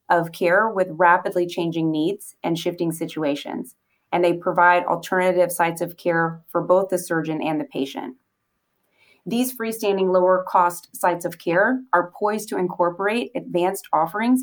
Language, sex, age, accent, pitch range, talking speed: English, female, 30-49, American, 170-200 Hz, 150 wpm